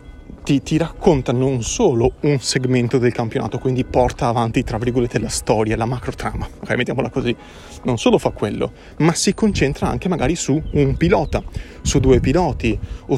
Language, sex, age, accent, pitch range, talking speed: Italian, male, 30-49, native, 115-145 Hz, 175 wpm